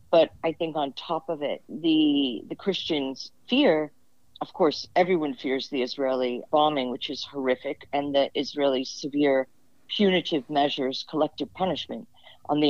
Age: 50-69